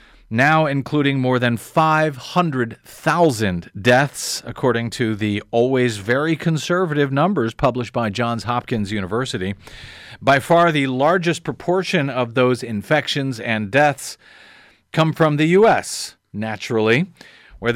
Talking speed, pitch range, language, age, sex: 115 wpm, 120-165 Hz, English, 40-59, male